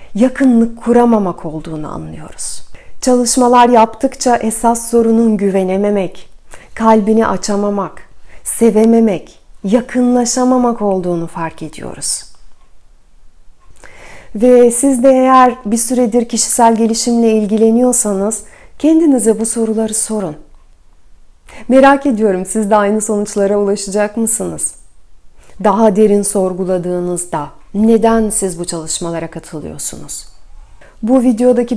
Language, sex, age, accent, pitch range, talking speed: Turkish, female, 40-59, native, 180-235 Hz, 90 wpm